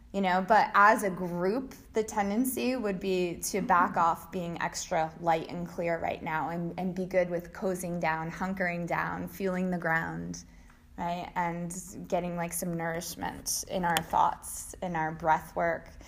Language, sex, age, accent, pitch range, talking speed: English, female, 20-39, American, 165-205 Hz, 170 wpm